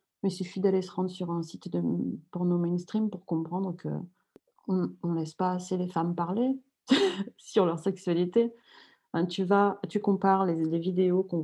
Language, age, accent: French, 30-49, French